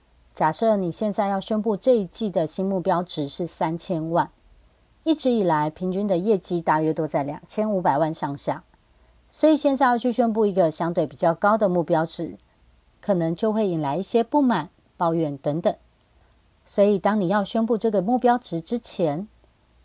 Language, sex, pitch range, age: Chinese, female, 160-220 Hz, 40-59